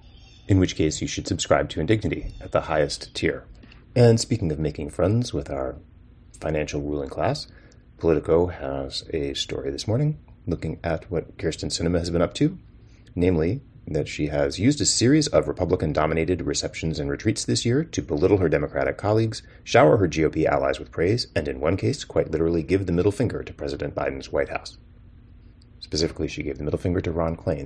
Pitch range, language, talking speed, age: 80-110 Hz, English, 185 wpm, 30-49